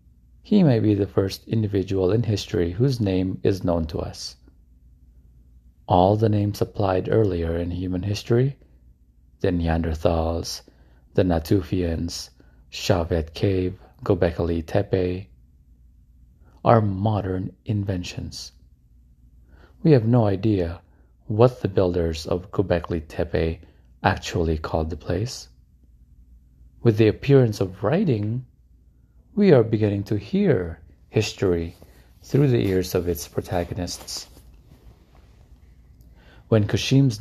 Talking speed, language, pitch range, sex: 105 wpm, English, 75-105 Hz, male